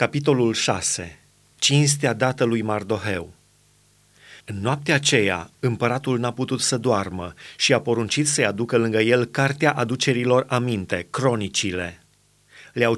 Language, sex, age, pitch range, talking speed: Romanian, male, 30-49, 110-140 Hz, 120 wpm